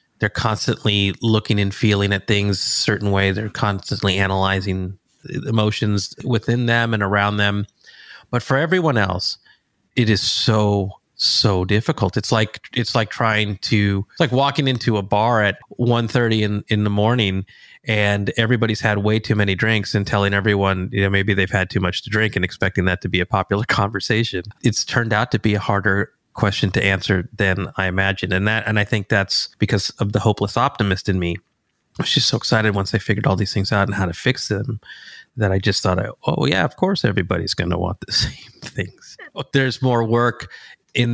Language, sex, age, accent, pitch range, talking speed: English, male, 30-49, American, 100-115 Hz, 195 wpm